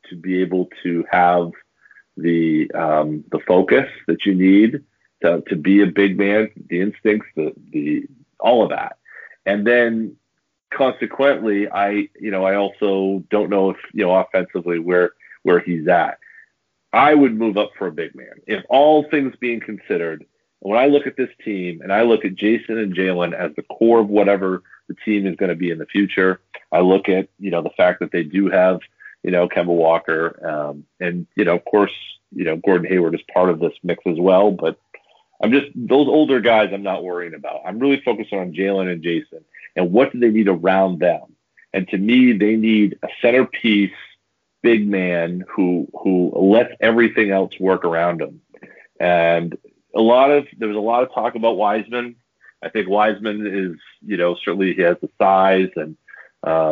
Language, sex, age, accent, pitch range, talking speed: English, male, 40-59, American, 90-115 Hz, 190 wpm